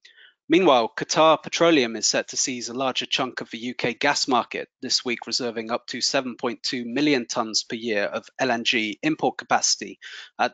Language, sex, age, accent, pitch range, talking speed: English, male, 30-49, British, 120-150 Hz, 170 wpm